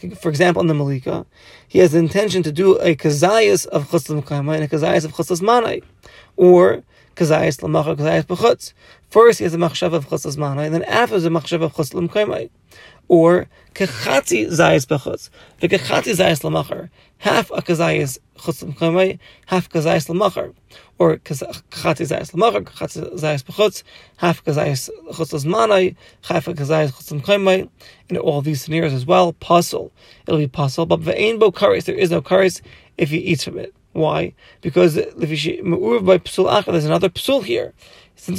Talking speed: 160 wpm